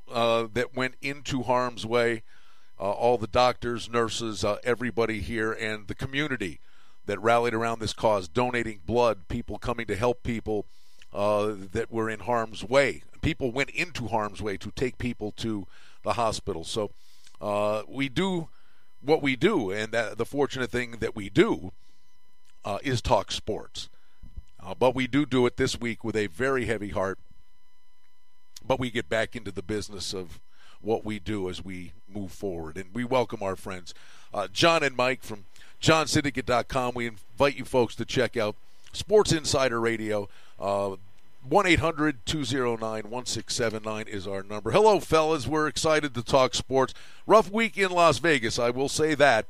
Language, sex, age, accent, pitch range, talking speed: English, male, 50-69, American, 105-135 Hz, 175 wpm